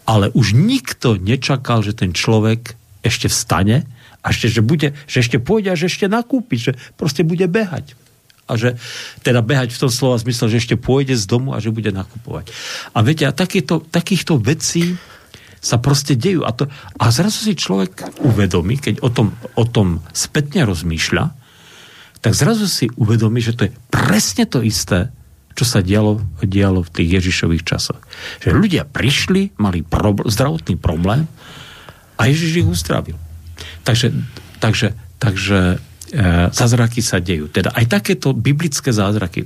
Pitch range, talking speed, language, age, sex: 105-140 Hz, 160 wpm, Slovak, 50-69, male